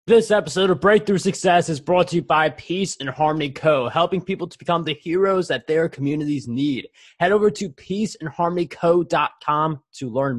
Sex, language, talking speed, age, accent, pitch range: male, English, 175 wpm, 20-39, American, 150-185 Hz